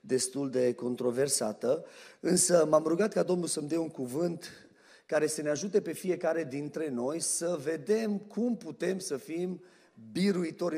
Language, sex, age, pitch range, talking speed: Romanian, male, 30-49, 135-170 Hz, 150 wpm